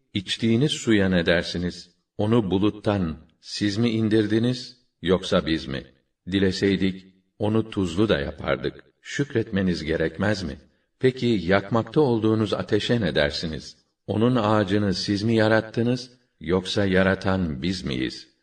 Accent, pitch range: native, 90-105 Hz